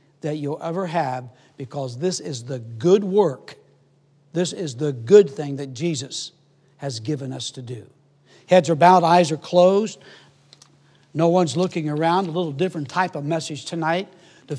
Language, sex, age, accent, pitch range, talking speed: English, male, 60-79, American, 145-185 Hz, 165 wpm